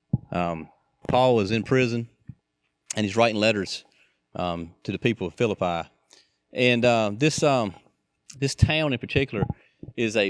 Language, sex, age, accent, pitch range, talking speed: English, male, 30-49, American, 95-115 Hz, 145 wpm